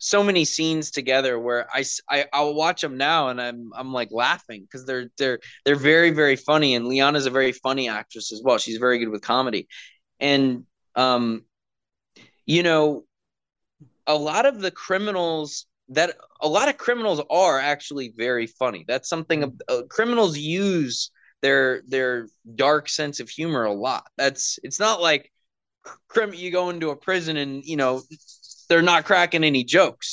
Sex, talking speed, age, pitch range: male, 170 wpm, 20-39, 130-170 Hz